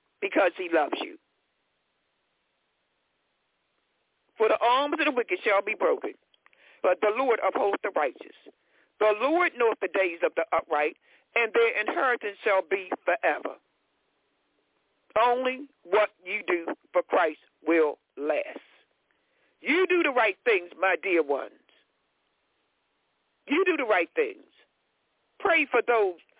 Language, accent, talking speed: English, American, 130 wpm